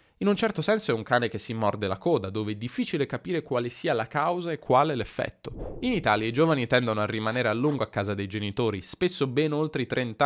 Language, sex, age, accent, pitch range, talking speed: Italian, male, 20-39, native, 105-145 Hz, 240 wpm